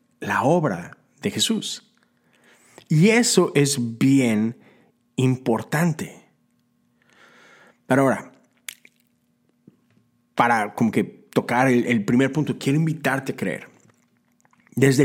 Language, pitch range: Spanish, 95-130 Hz